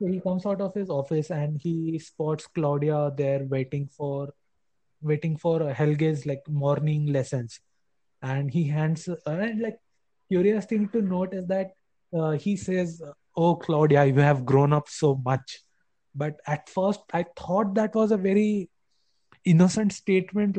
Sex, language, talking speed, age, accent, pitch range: male, English, 150 wpm, 20-39, Indian, 140-165 Hz